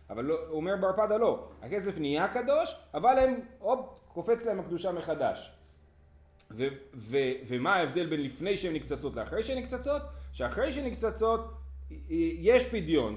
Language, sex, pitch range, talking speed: Hebrew, male, 140-230 Hz, 140 wpm